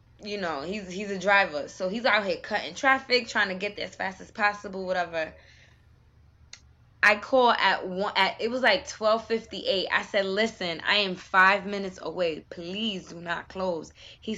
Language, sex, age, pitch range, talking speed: English, female, 20-39, 170-205 Hz, 180 wpm